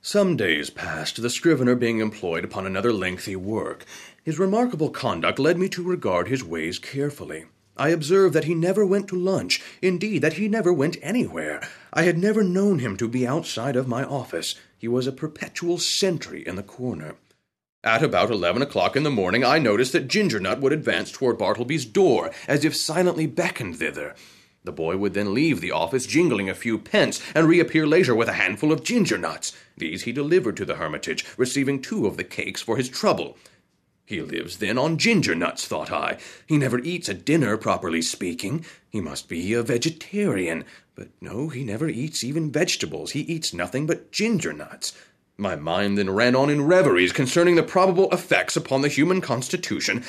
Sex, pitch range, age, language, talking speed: male, 125-185 Hz, 30-49, English, 185 wpm